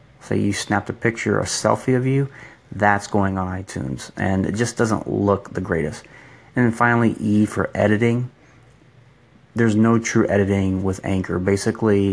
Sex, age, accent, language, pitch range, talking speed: male, 30-49, American, English, 100-115 Hz, 170 wpm